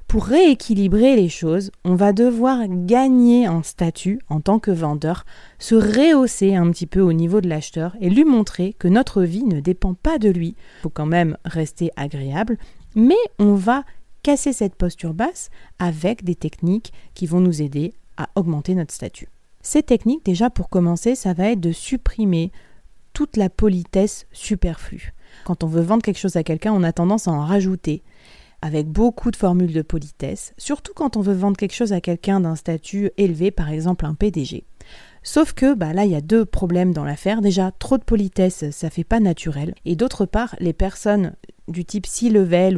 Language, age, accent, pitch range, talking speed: French, 30-49, French, 170-215 Hz, 190 wpm